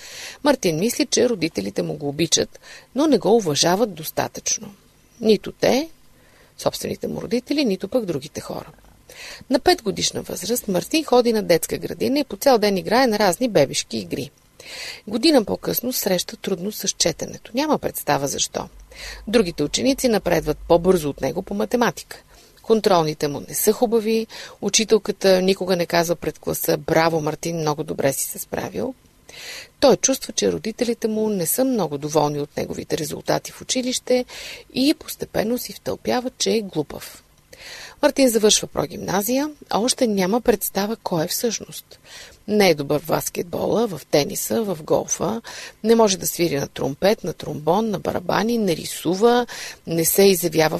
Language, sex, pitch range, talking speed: Bulgarian, female, 170-245 Hz, 150 wpm